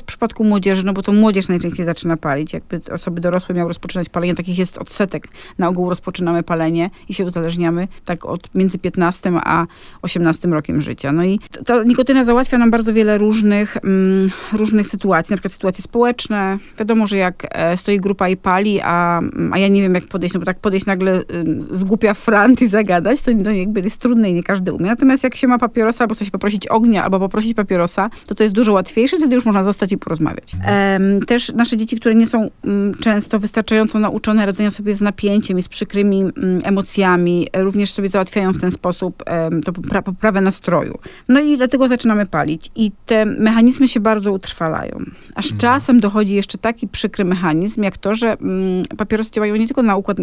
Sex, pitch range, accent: female, 180-220 Hz, native